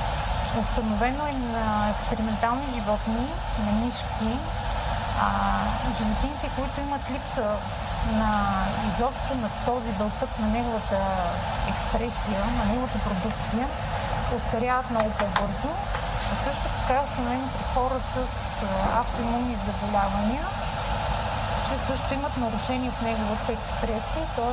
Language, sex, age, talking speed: Bulgarian, female, 20-39, 110 wpm